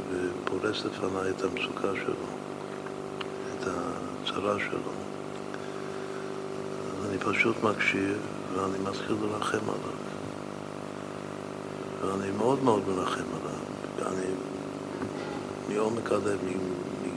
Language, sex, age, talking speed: Hebrew, male, 60-79, 80 wpm